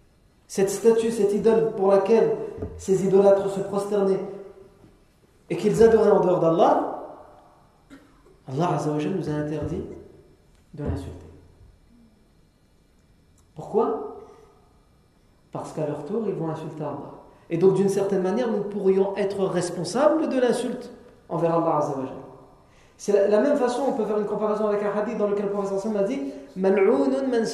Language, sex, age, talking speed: French, male, 40-59, 140 wpm